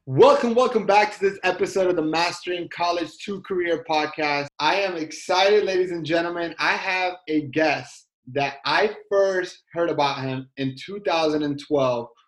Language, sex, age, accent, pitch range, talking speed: English, male, 20-39, American, 145-180 Hz, 150 wpm